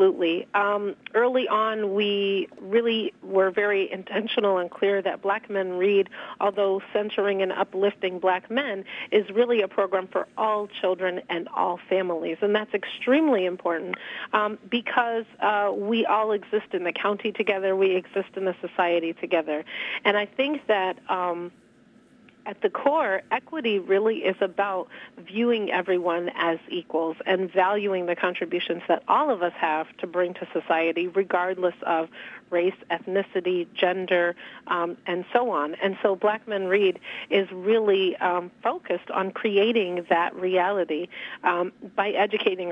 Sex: female